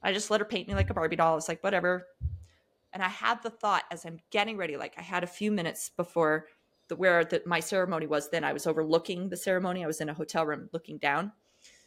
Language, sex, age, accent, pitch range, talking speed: English, female, 30-49, American, 165-210 Hz, 245 wpm